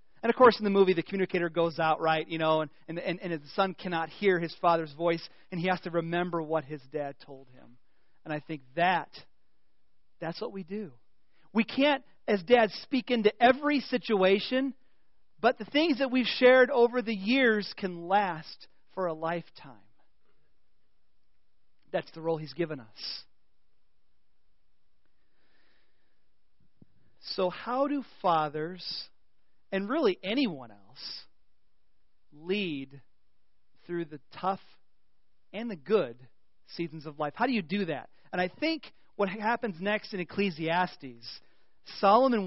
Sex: male